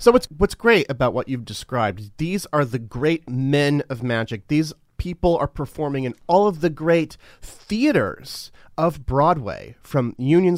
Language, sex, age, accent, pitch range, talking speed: English, male, 30-49, American, 130-180 Hz, 165 wpm